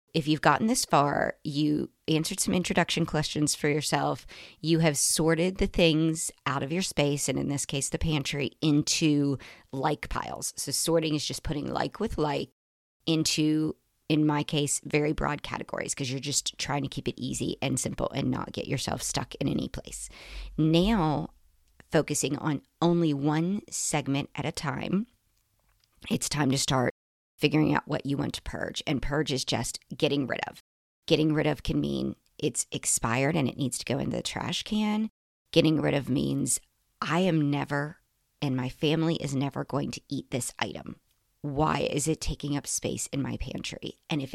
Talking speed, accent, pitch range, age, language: 180 wpm, American, 135-160 Hz, 40-59, English